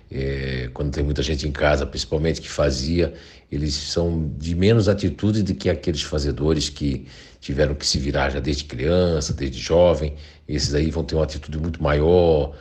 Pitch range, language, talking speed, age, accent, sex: 70-90 Hz, Portuguese, 175 wpm, 60-79, Brazilian, male